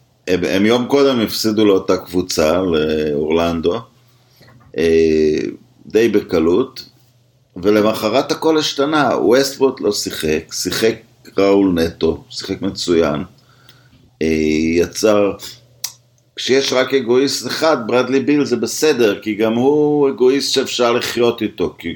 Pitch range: 85-120 Hz